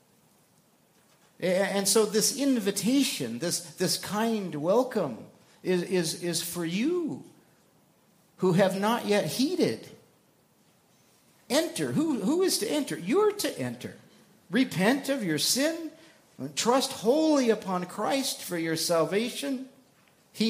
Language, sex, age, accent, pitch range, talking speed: English, male, 50-69, American, 170-245 Hz, 115 wpm